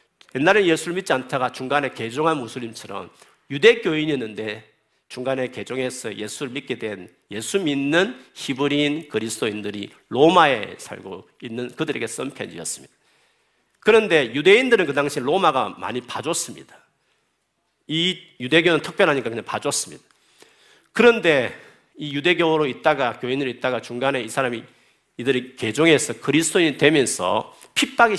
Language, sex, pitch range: Korean, male, 125-180 Hz